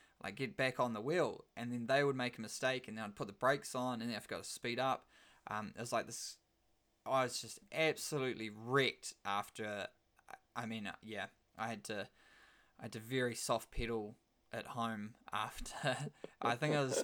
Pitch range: 110-135 Hz